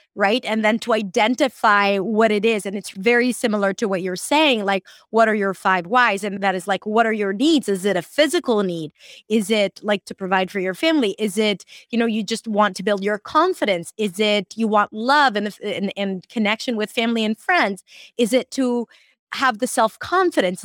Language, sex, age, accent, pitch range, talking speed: English, female, 20-39, American, 200-250 Hz, 215 wpm